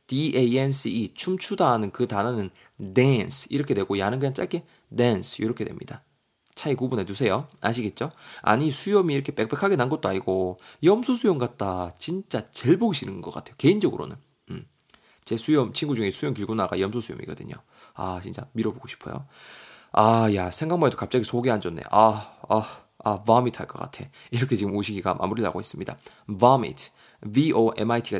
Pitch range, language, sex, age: 105-140 Hz, Korean, male, 20-39